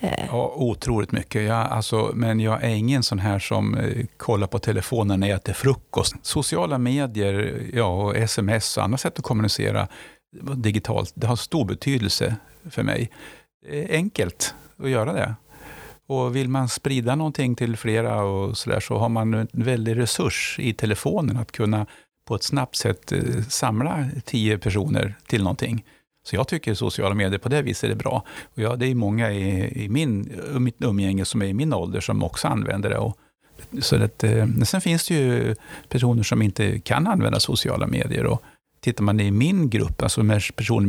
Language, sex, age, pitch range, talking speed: Swedish, male, 50-69, 105-130 Hz, 180 wpm